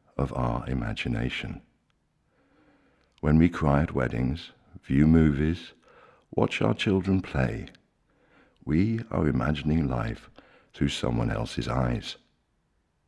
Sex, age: male, 60-79